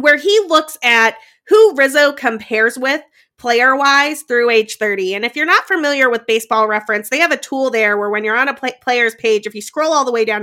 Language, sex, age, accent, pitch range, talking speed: English, female, 30-49, American, 225-290 Hz, 230 wpm